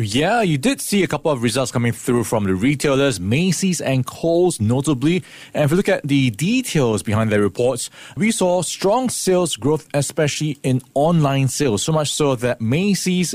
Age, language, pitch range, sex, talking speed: 20-39, English, 120-155 Hz, male, 185 wpm